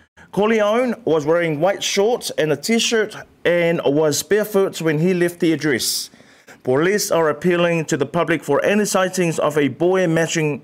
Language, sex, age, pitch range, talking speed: English, male, 30-49, 155-205 Hz, 165 wpm